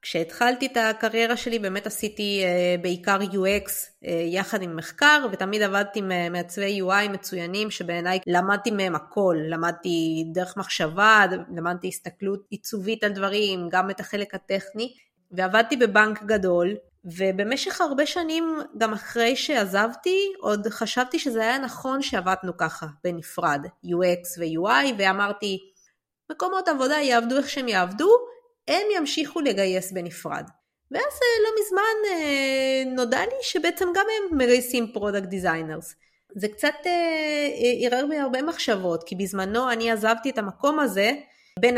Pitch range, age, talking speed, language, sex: 190-270 Hz, 20-39, 125 wpm, Hebrew, female